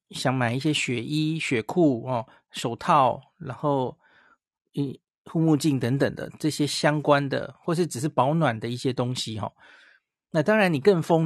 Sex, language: male, Chinese